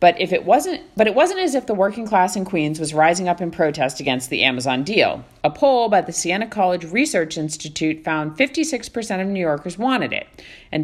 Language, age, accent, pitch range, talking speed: English, 40-59, American, 150-230 Hz, 225 wpm